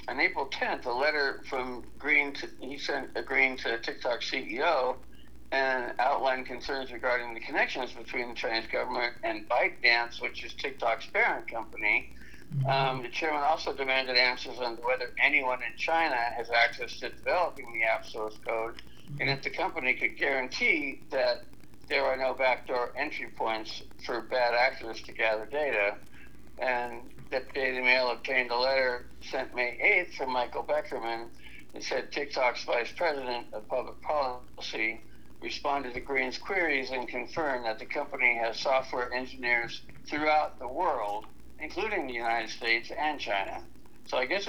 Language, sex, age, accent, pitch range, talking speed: English, male, 60-79, American, 115-135 Hz, 155 wpm